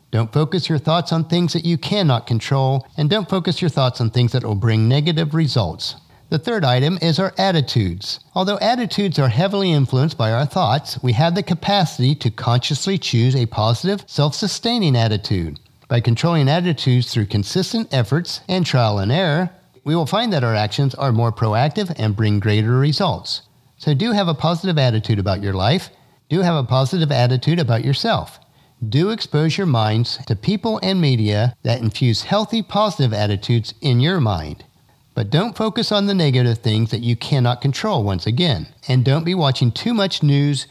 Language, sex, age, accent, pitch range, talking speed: English, male, 50-69, American, 115-170 Hz, 180 wpm